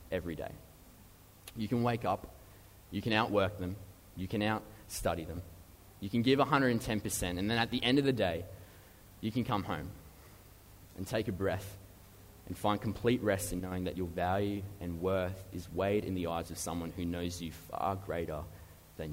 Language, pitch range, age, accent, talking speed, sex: English, 85-105 Hz, 20-39, Australian, 180 wpm, male